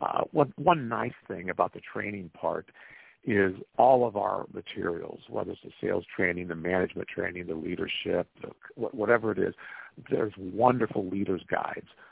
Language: English